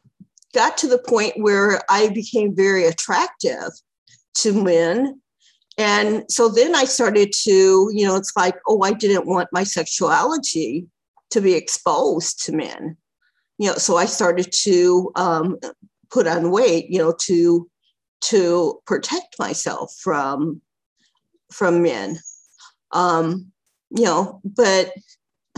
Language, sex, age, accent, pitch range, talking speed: English, female, 50-69, American, 180-245 Hz, 130 wpm